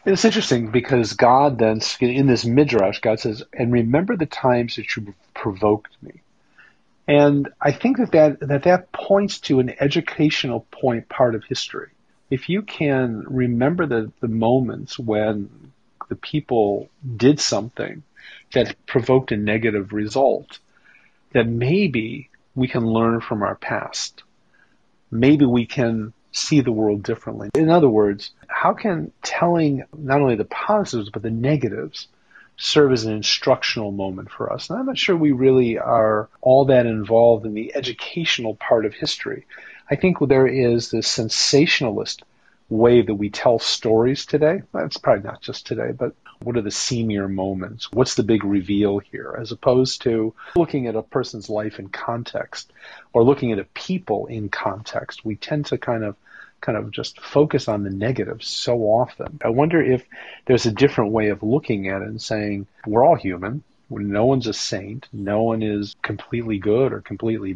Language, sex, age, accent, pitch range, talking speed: English, male, 40-59, American, 110-140 Hz, 165 wpm